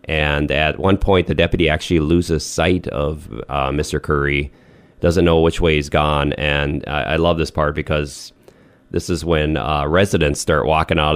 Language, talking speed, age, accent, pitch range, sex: English, 185 wpm, 30-49, American, 75-85 Hz, male